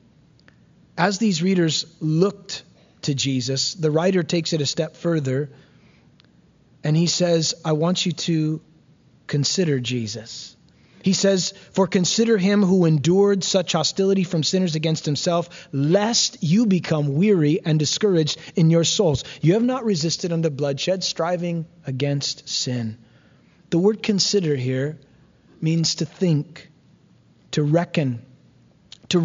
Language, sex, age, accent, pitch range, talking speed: English, male, 30-49, American, 155-200 Hz, 130 wpm